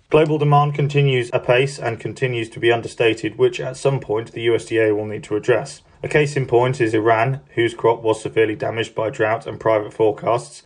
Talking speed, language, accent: 195 wpm, English, British